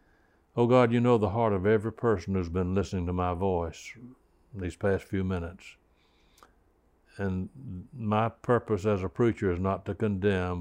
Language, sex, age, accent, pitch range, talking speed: English, male, 60-79, American, 90-105 Hz, 165 wpm